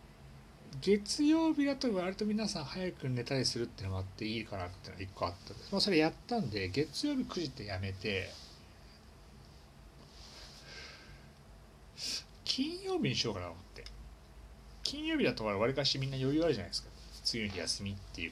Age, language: 40-59, Japanese